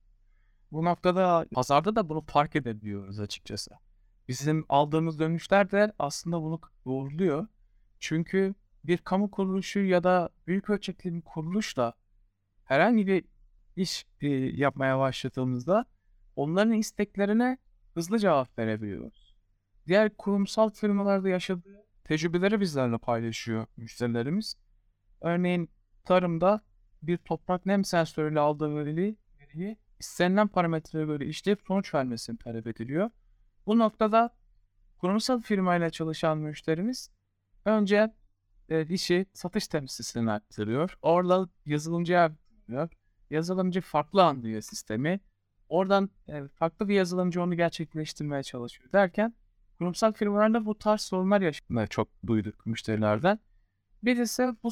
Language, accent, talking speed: Turkish, native, 105 wpm